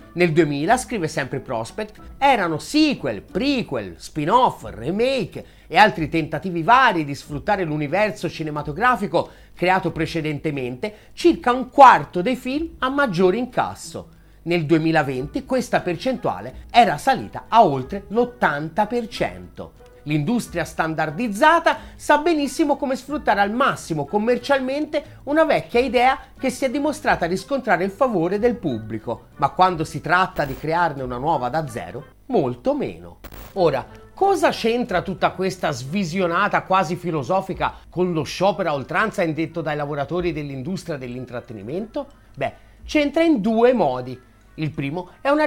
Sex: male